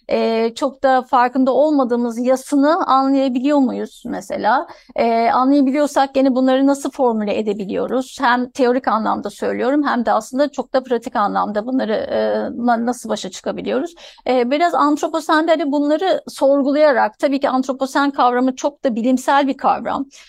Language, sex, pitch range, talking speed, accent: Turkish, female, 230-280 Hz, 140 wpm, native